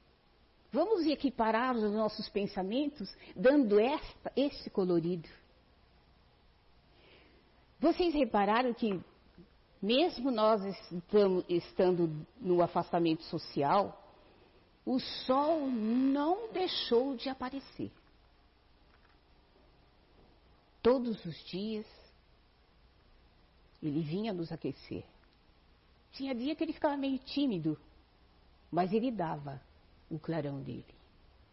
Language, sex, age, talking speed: Portuguese, female, 50-69, 85 wpm